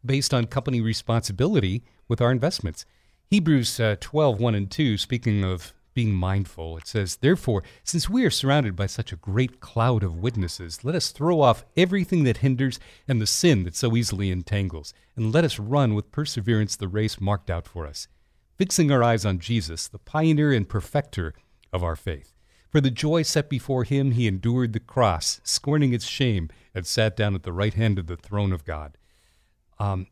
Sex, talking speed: male, 190 wpm